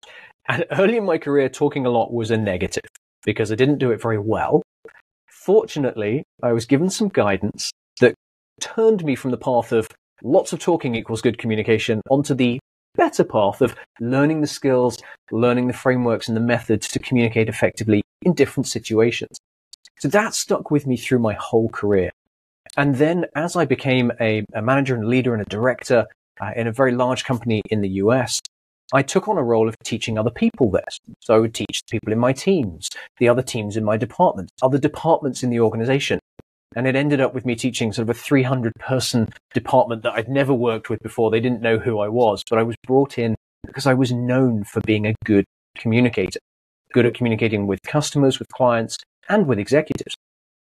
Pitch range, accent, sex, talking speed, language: 110-135 Hz, British, male, 195 wpm, English